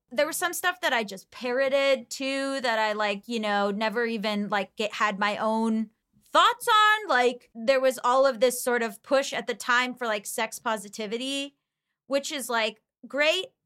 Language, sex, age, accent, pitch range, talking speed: English, female, 20-39, American, 220-275 Hz, 185 wpm